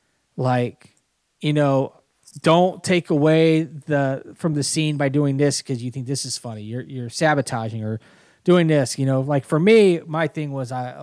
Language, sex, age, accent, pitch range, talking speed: English, male, 30-49, American, 125-155 Hz, 185 wpm